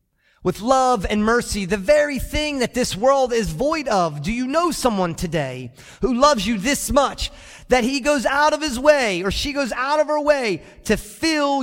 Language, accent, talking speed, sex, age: English, American, 200 wpm, male, 30-49